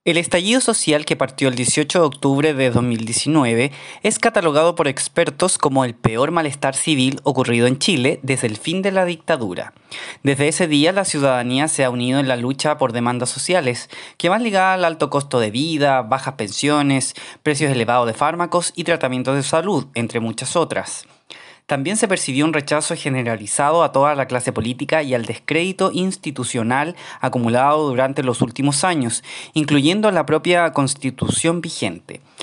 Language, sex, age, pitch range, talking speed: Spanish, male, 20-39, 130-170 Hz, 165 wpm